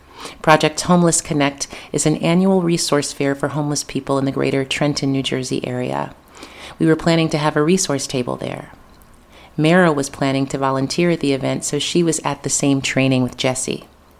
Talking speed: 185 wpm